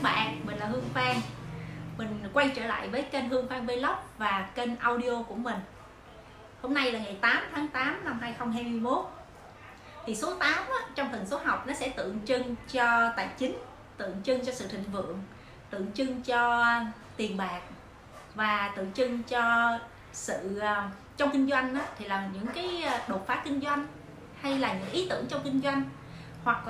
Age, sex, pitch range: 20-39, female, 200-275 Hz